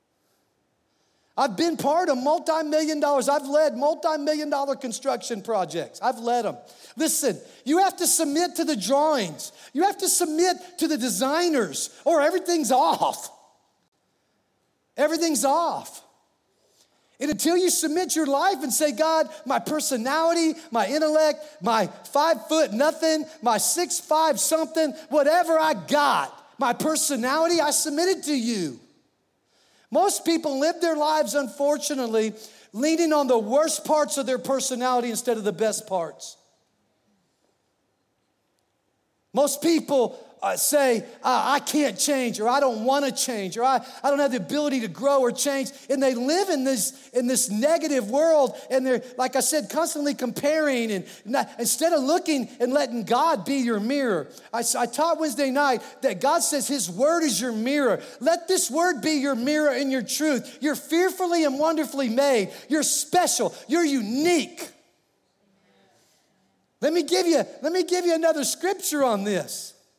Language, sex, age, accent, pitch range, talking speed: English, male, 40-59, American, 260-315 Hz, 155 wpm